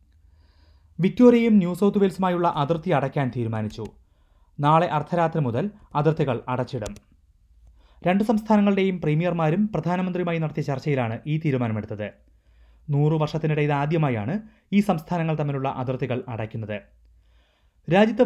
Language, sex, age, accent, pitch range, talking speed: Malayalam, male, 30-49, native, 115-175 Hz, 90 wpm